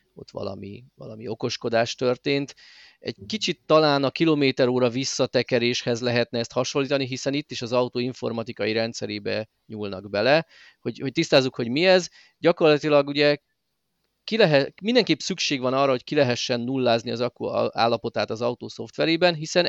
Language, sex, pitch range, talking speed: Hungarian, male, 115-145 Hz, 145 wpm